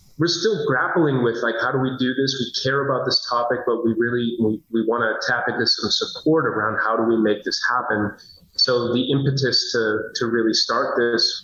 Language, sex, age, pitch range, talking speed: English, male, 30-49, 115-130 Hz, 215 wpm